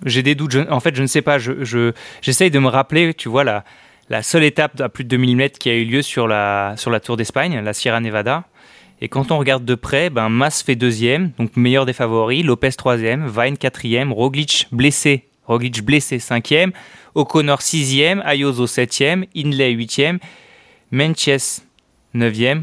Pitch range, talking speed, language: 120-150 Hz, 185 wpm, French